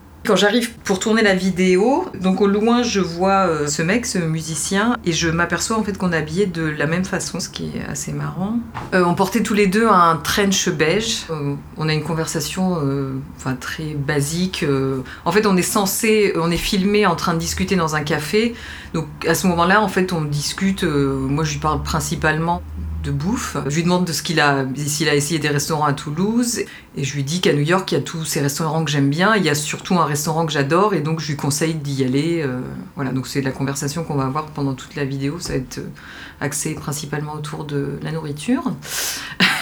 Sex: female